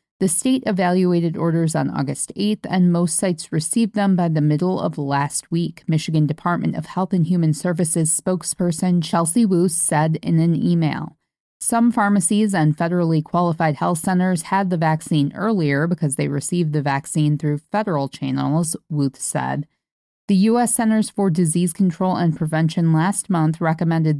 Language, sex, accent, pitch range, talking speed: English, female, American, 155-190 Hz, 160 wpm